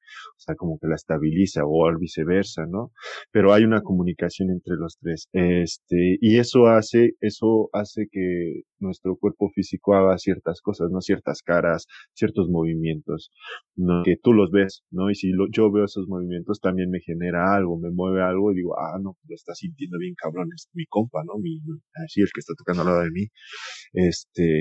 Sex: male